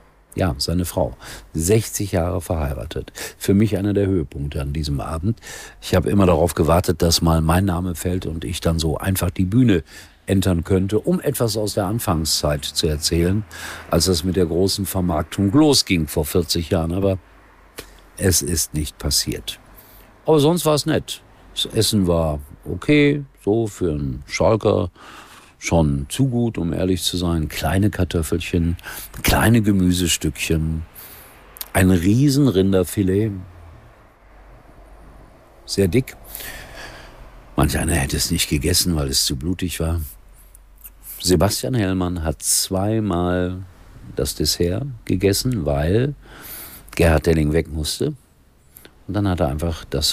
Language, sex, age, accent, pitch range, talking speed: German, male, 50-69, German, 80-100 Hz, 135 wpm